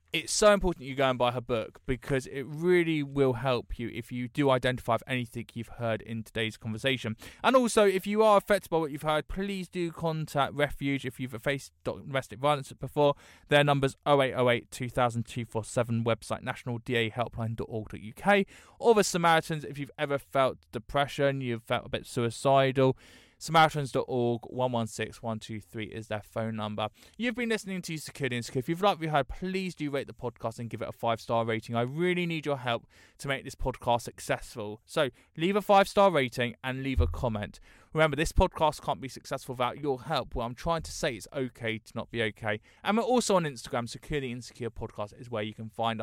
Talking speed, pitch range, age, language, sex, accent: 190 wpm, 115-160 Hz, 20-39, English, male, British